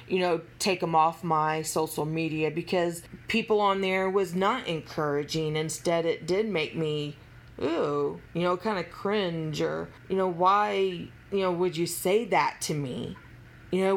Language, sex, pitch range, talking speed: English, female, 145-185 Hz, 170 wpm